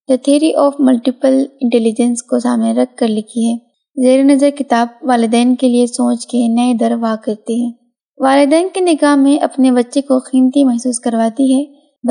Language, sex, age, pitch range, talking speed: Urdu, female, 20-39, 240-280 Hz, 170 wpm